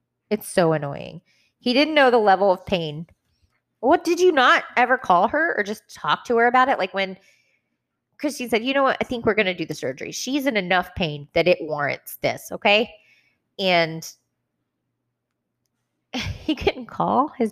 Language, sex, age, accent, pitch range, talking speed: English, female, 20-39, American, 165-240 Hz, 180 wpm